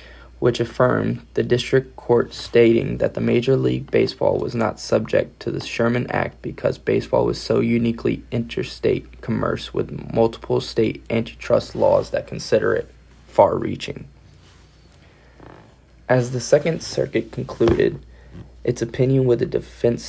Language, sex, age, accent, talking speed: English, male, 20-39, American, 135 wpm